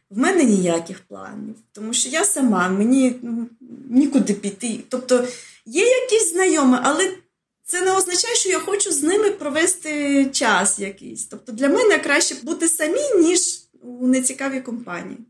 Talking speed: 150 wpm